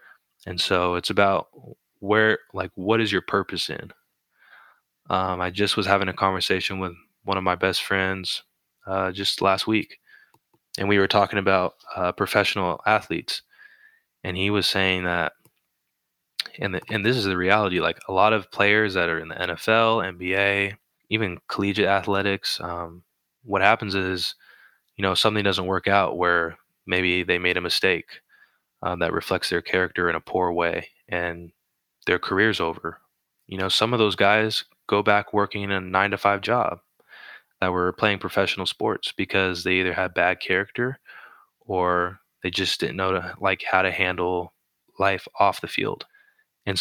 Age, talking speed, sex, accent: 20-39, 170 wpm, male, American